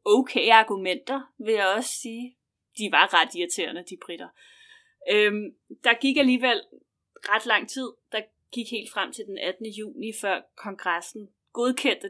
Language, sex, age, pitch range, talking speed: Danish, female, 30-49, 200-275 Hz, 150 wpm